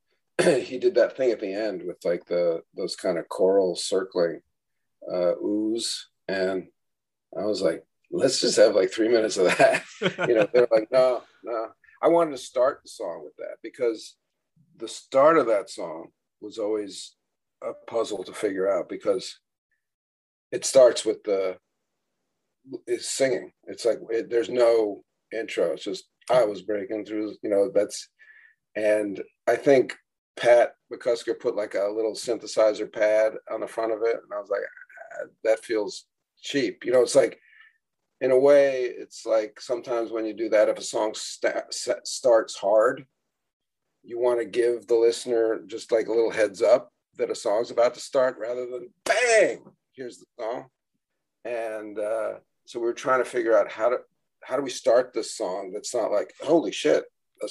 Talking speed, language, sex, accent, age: 175 wpm, English, male, American, 50-69